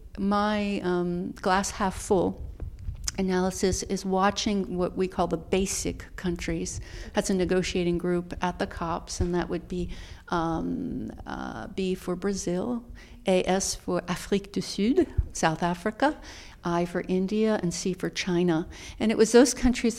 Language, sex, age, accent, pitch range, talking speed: English, female, 50-69, American, 175-210 Hz, 140 wpm